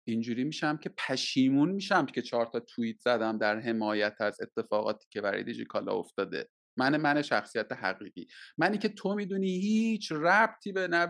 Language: Persian